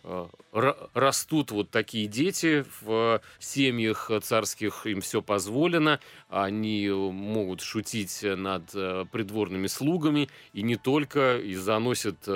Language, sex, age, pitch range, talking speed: Russian, male, 30-49, 100-125 Hz, 100 wpm